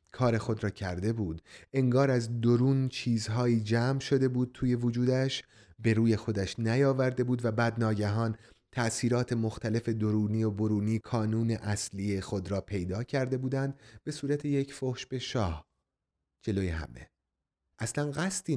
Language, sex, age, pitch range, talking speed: Persian, male, 30-49, 100-125 Hz, 140 wpm